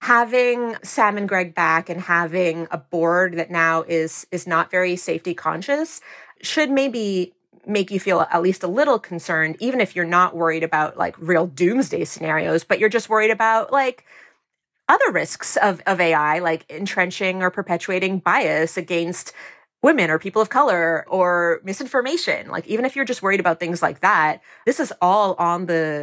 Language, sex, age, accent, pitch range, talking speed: English, female, 30-49, American, 170-220 Hz, 175 wpm